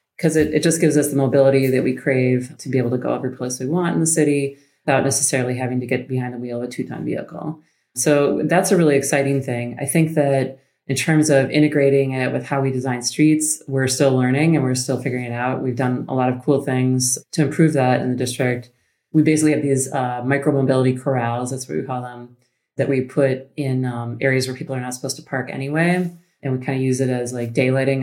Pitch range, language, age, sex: 125-140 Hz, English, 30-49, female